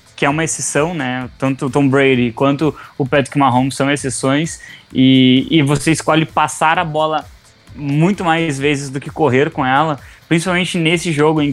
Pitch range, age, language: 135-155 Hz, 20-39, English